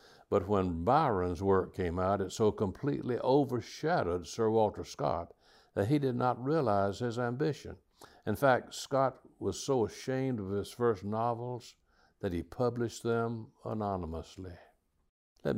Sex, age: male, 60-79